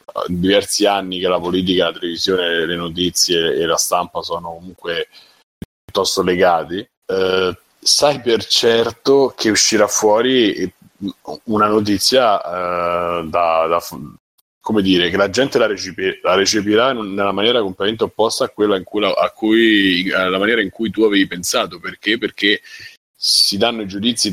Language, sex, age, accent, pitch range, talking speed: Italian, male, 30-49, native, 95-115 Hz, 145 wpm